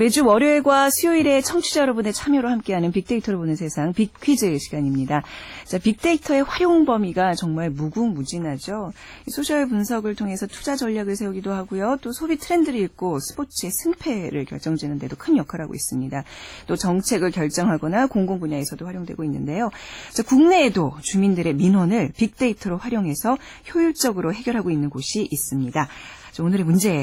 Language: Korean